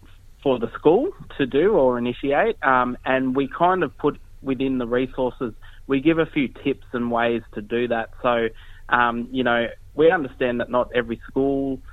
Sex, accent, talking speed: male, Australian, 180 wpm